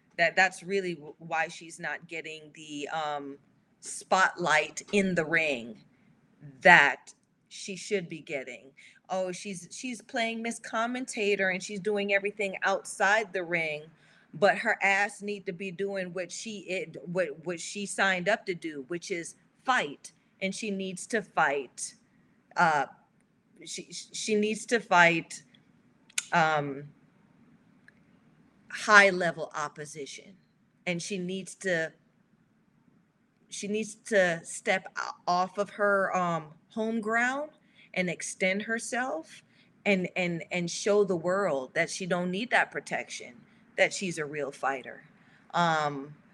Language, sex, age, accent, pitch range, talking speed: English, female, 30-49, American, 170-210 Hz, 130 wpm